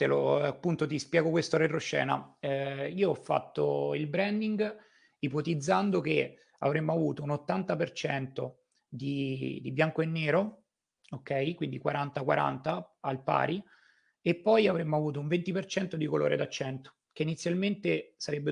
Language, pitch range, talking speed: Italian, 135-175 Hz, 130 wpm